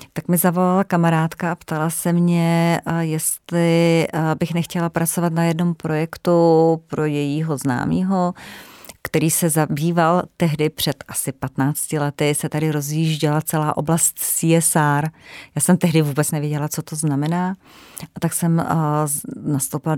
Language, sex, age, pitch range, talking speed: Czech, female, 30-49, 150-175 Hz, 130 wpm